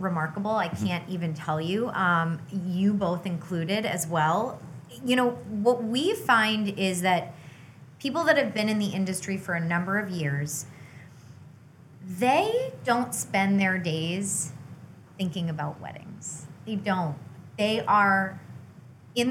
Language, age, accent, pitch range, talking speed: English, 20-39, American, 160-210 Hz, 135 wpm